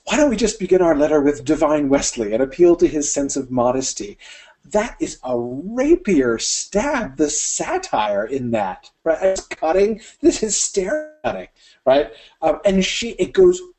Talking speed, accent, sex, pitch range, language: 165 wpm, American, male, 140-205 Hz, English